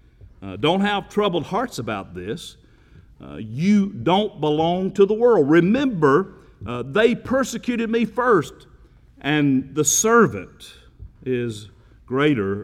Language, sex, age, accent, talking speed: English, male, 50-69, American, 120 wpm